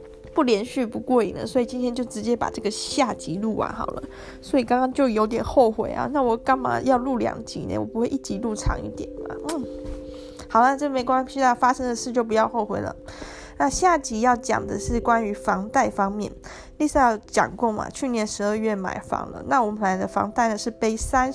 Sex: female